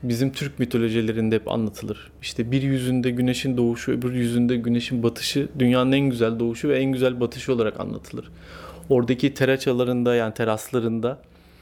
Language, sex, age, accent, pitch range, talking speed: Turkish, male, 30-49, native, 115-150 Hz, 145 wpm